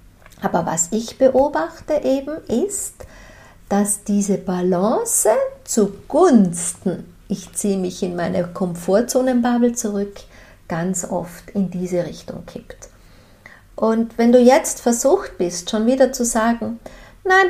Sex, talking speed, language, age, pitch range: female, 115 wpm, German, 50-69, 180-245 Hz